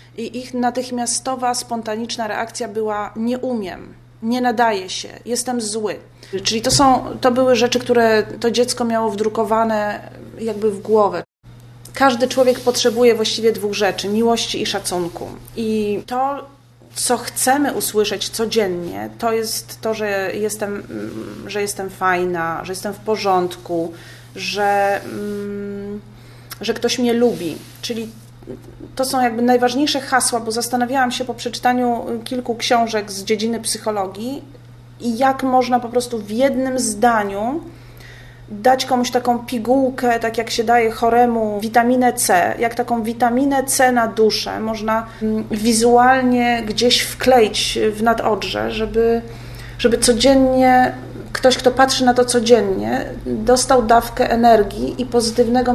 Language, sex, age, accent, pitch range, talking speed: Polish, female, 30-49, native, 205-245 Hz, 130 wpm